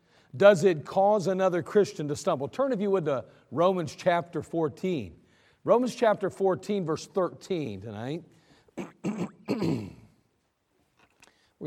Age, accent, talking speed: 50-69, American, 115 wpm